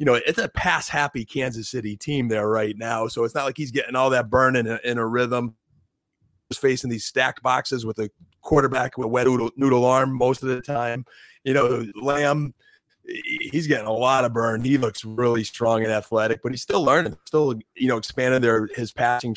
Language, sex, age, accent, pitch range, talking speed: English, male, 30-49, American, 110-125 Hz, 210 wpm